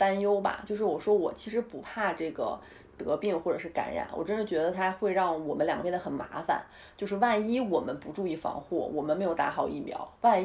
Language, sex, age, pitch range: Chinese, female, 30-49, 170-205 Hz